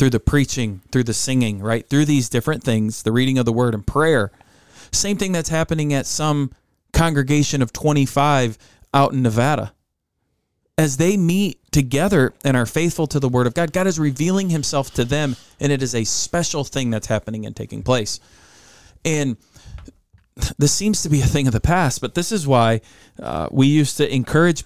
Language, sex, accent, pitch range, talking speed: English, male, American, 115-150 Hz, 190 wpm